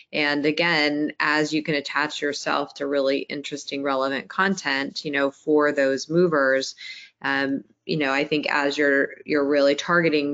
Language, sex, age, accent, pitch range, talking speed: English, female, 20-39, American, 140-150 Hz, 155 wpm